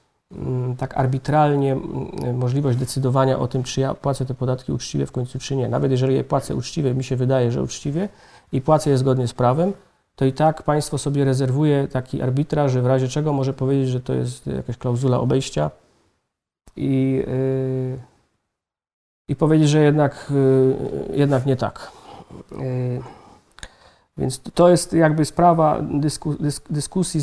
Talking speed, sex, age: 145 wpm, male, 40-59